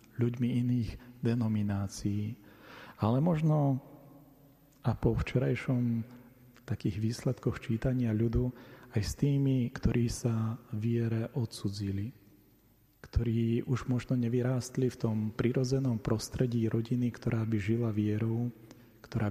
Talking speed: 105 wpm